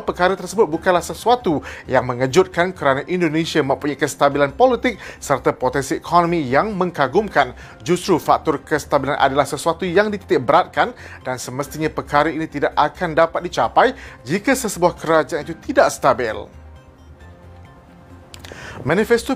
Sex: male